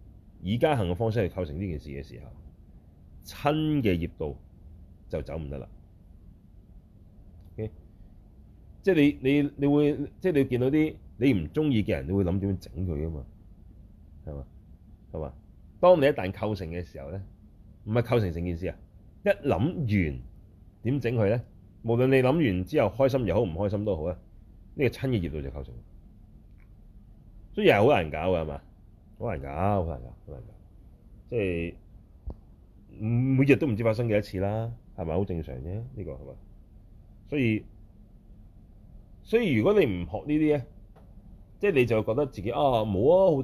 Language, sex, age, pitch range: Chinese, male, 30-49, 90-120 Hz